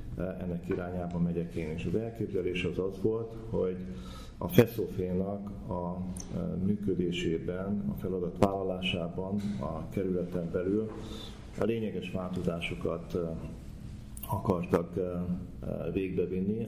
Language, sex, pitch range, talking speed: Hungarian, male, 90-105 Hz, 90 wpm